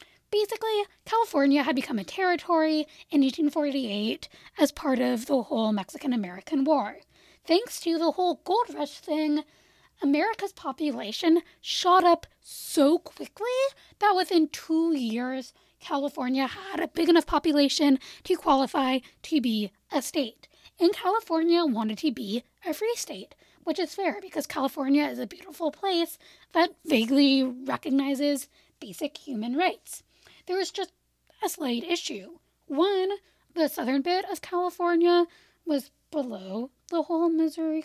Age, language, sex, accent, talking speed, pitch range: 10-29, English, female, American, 135 wpm, 275-350 Hz